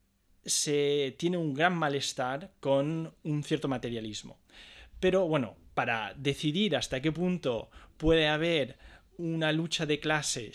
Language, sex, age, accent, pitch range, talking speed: Spanish, male, 20-39, Spanish, 125-165 Hz, 125 wpm